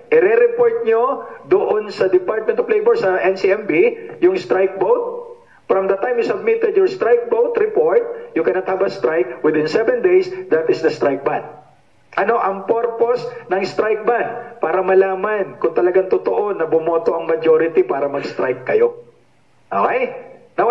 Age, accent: 50-69, Filipino